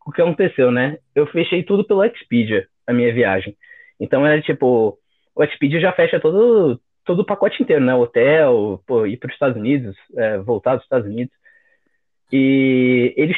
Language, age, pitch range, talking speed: Portuguese, 20-39, 125-170 Hz, 175 wpm